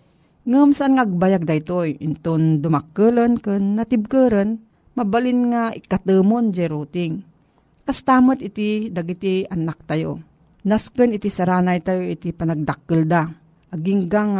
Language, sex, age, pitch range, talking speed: Filipino, female, 40-59, 165-210 Hz, 100 wpm